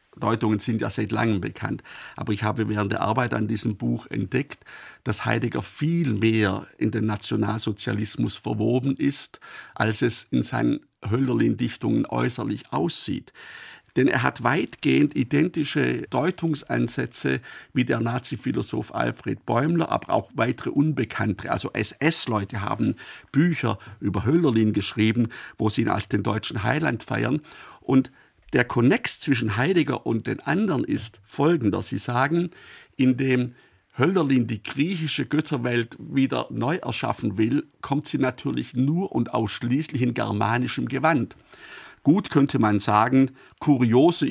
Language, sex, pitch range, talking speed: German, male, 110-145 Hz, 130 wpm